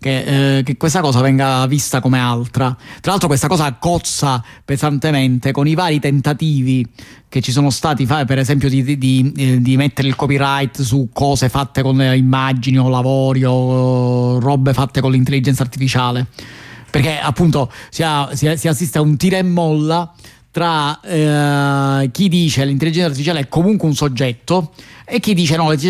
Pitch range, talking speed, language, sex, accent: 130-155 Hz, 160 wpm, Italian, male, native